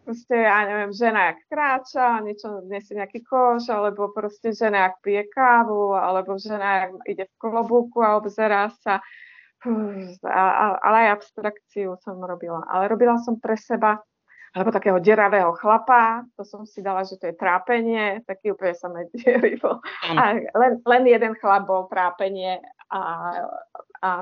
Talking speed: 150 wpm